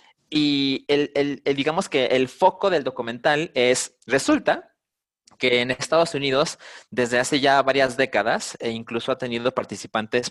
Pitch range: 125-155 Hz